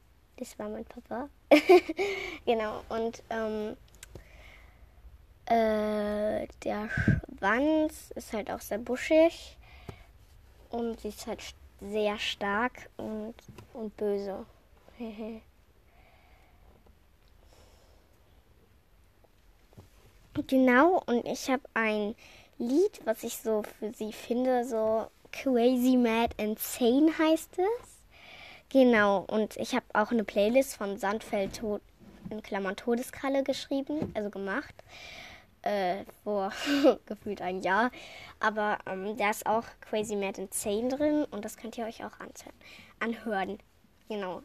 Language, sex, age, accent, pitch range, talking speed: German, female, 10-29, German, 205-255 Hz, 110 wpm